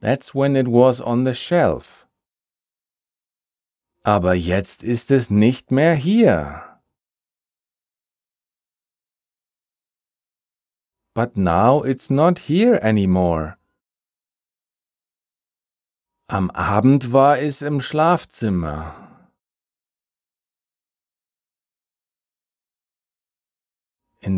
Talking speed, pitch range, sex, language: 65 wpm, 95-140 Hz, male, German